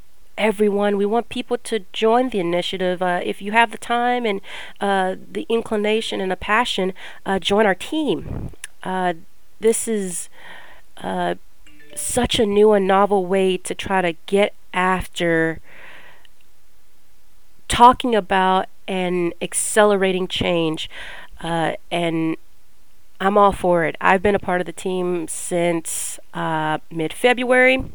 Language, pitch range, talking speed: English, 175-215 Hz, 130 wpm